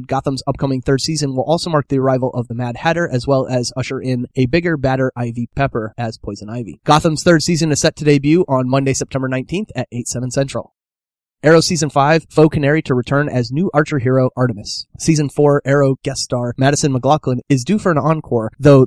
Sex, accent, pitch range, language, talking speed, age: male, American, 125-145 Hz, English, 210 wpm, 30-49